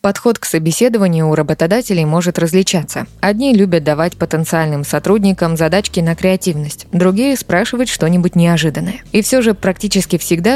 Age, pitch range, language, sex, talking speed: 20-39, 160-200 Hz, Russian, female, 135 wpm